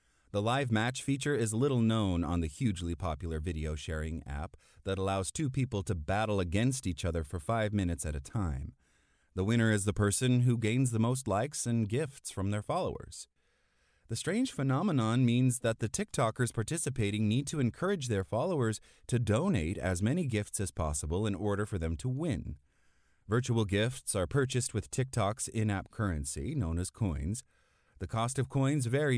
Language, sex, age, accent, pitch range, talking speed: English, male, 30-49, American, 90-120 Hz, 175 wpm